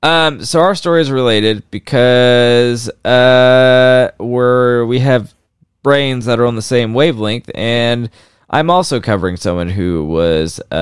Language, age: English, 20-39